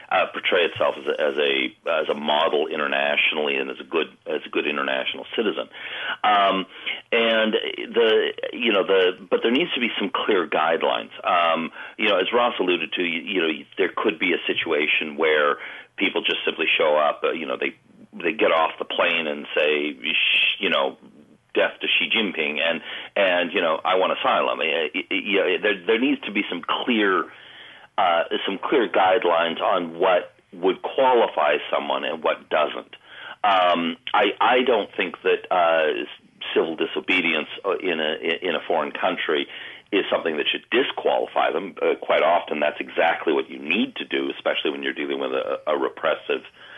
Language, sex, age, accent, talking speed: English, male, 40-59, American, 180 wpm